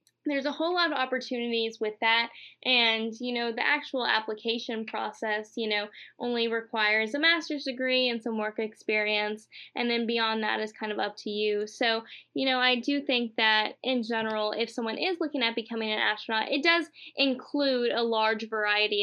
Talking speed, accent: 185 wpm, American